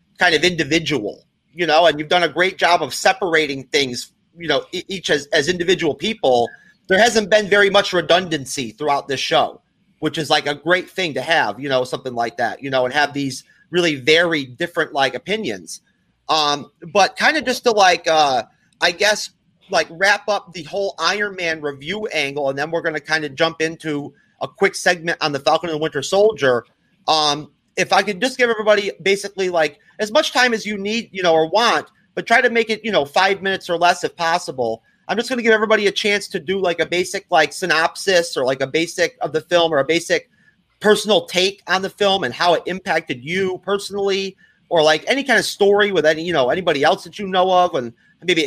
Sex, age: male, 30-49